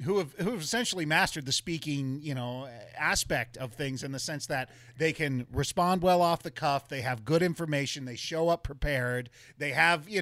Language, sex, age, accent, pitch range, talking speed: English, male, 30-49, American, 140-175 Hz, 205 wpm